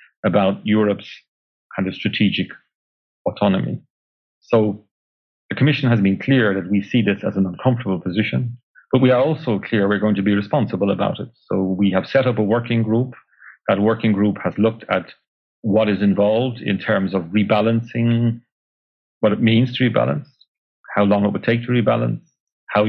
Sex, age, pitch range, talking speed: male, 40-59, 95-115 Hz, 175 wpm